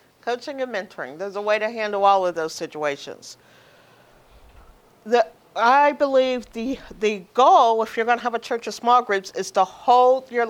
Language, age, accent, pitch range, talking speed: English, 40-59, American, 205-265 Hz, 175 wpm